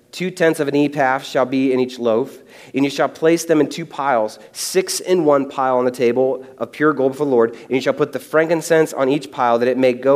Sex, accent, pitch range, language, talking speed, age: male, American, 125-160 Hz, English, 260 wpm, 30-49